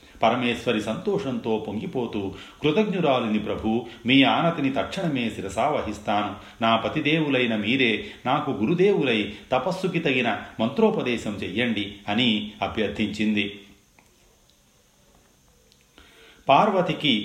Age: 40-59